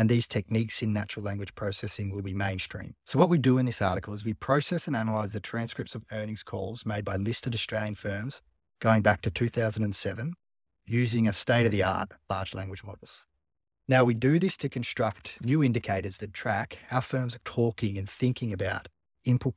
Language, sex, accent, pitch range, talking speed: English, male, Australian, 100-125 Hz, 185 wpm